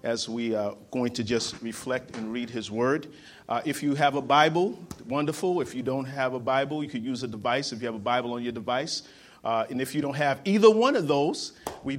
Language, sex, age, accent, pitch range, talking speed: English, male, 40-59, American, 125-155 Hz, 240 wpm